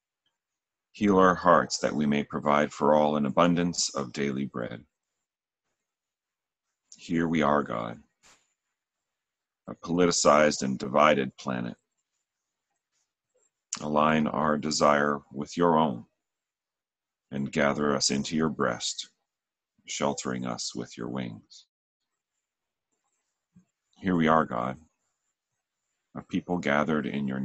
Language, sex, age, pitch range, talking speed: English, male, 40-59, 70-85 Hz, 105 wpm